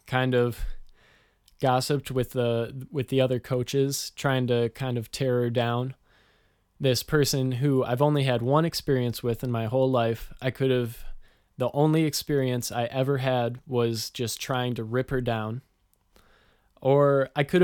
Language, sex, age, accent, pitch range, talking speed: English, male, 20-39, American, 120-140 Hz, 165 wpm